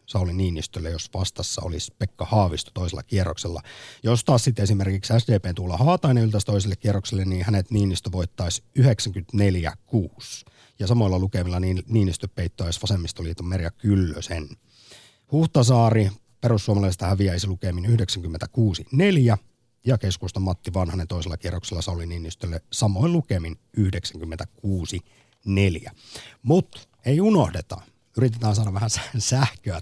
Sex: male